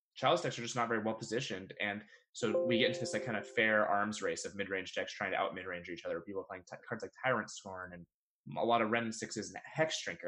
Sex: male